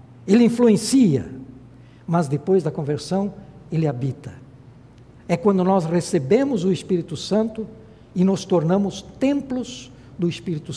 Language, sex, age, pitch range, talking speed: Portuguese, male, 60-79, 125-195 Hz, 115 wpm